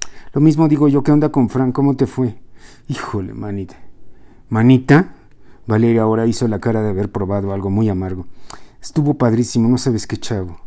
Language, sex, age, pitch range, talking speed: Spanish, male, 50-69, 110-140 Hz, 175 wpm